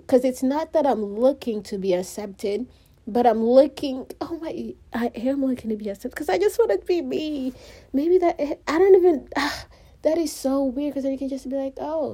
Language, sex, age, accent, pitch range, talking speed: English, female, 30-49, American, 225-295 Hz, 220 wpm